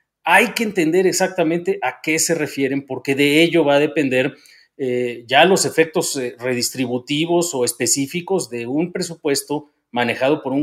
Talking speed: 160 wpm